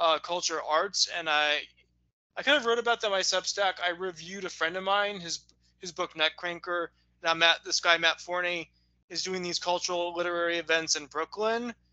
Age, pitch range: 20-39, 155-195 Hz